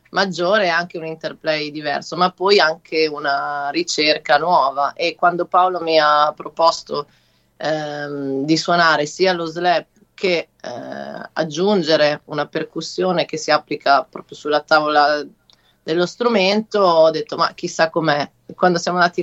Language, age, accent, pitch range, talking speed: English, 30-49, Italian, 150-175 Hz, 140 wpm